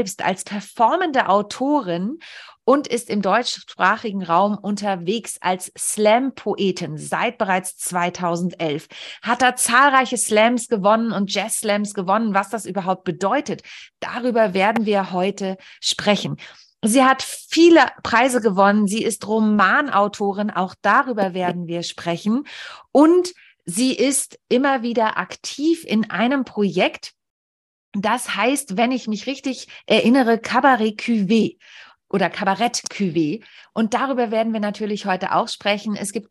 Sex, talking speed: female, 120 wpm